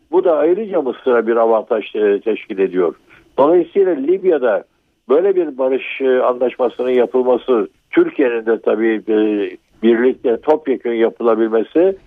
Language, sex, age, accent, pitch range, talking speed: Turkish, male, 60-79, native, 125-190 Hz, 105 wpm